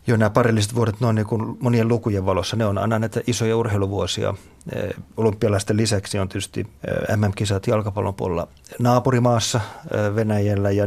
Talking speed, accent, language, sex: 145 wpm, native, Finnish, male